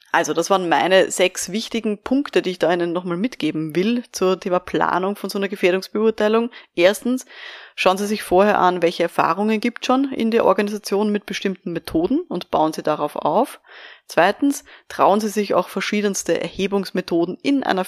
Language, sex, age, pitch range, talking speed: German, female, 20-39, 180-230 Hz, 170 wpm